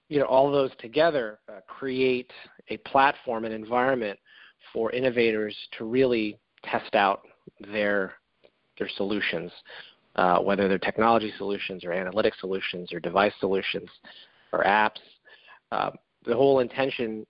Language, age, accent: English, 40-59, American